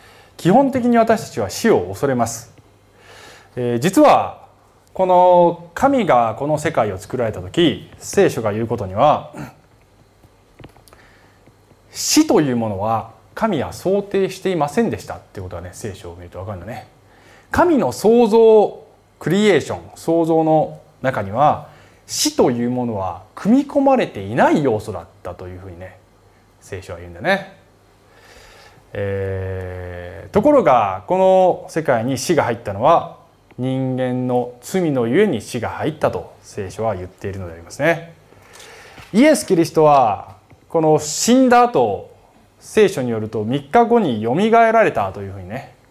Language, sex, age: Japanese, male, 20-39